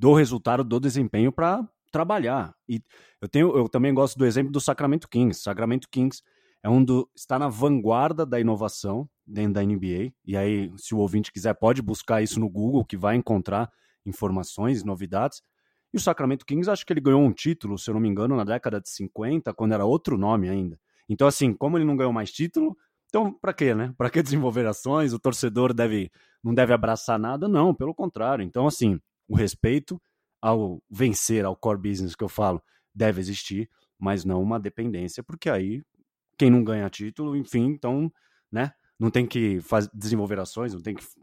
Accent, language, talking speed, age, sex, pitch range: Brazilian, Portuguese, 190 wpm, 20-39, male, 100-130 Hz